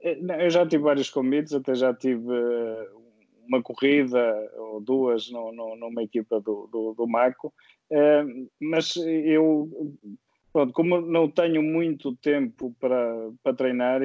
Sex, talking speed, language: male, 125 wpm, Portuguese